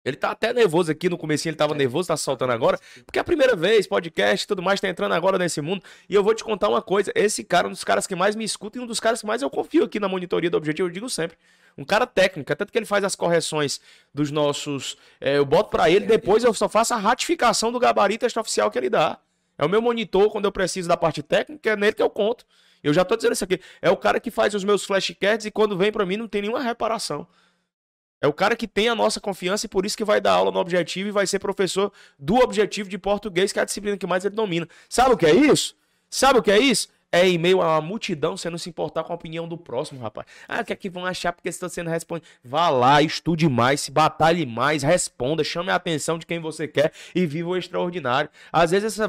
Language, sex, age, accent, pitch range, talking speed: Portuguese, male, 20-39, Brazilian, 160-210 Hz, 265 wpm